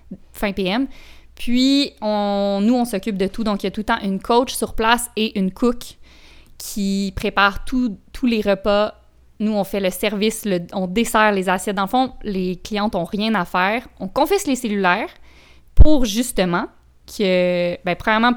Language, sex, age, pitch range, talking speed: French, female, 20-39, 190-230 Hz, 185 wpm